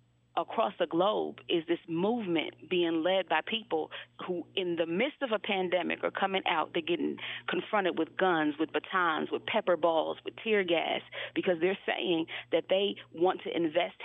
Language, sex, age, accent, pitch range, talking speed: English, female, 40-59, American, 170-205 Hz, 175 wpm